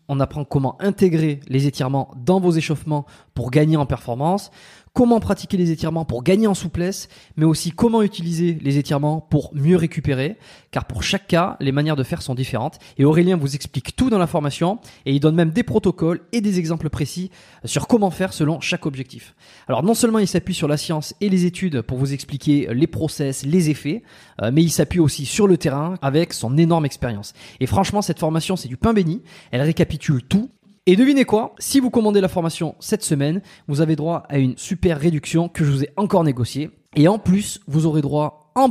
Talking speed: 210 wpm